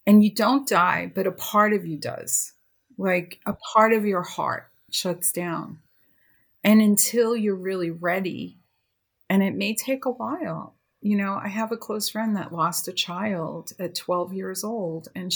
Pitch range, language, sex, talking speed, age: 170-205 Hz, English, female, 175 wpm, 40-59